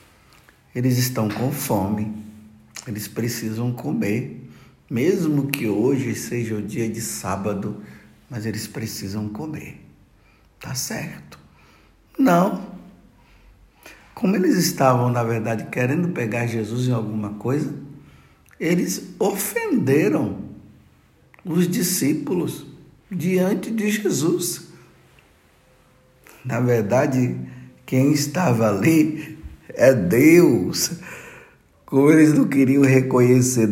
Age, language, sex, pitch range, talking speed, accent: 60-79, Portuguese, male, 110-150 Hz, 95 wpm, Brazilian